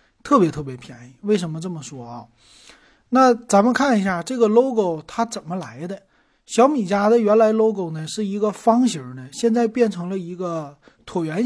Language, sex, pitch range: Chinese, male, 165-230 Hz